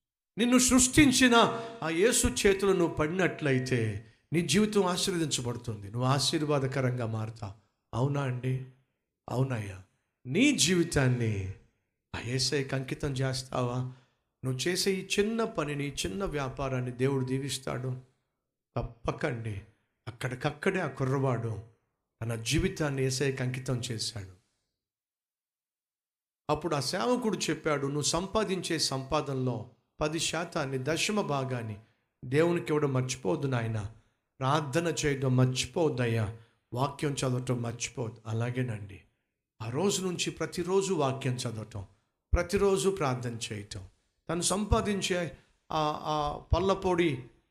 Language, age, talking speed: Telugu, 50-69, 95 wpm